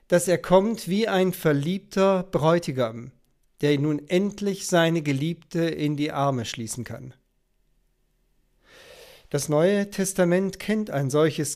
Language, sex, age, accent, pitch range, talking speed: German, male, 50-69, German, 135-175 Hz, 120 wpm